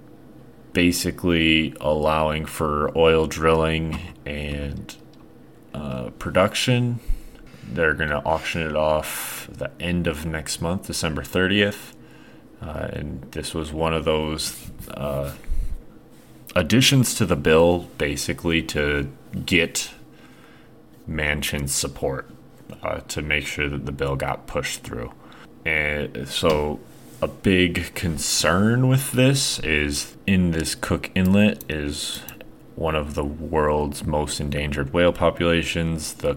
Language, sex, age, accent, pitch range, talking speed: English, male, 30-49, American, 75-85 Hz, 115 wpm